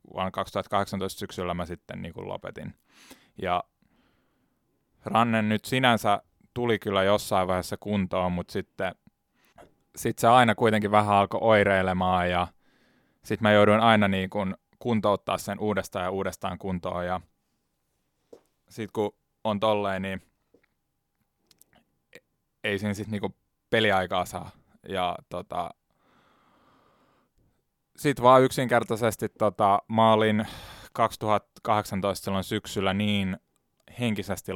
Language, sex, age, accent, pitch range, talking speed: Finnish, male, 20-39, native, 95-105 Hz, 105 wpm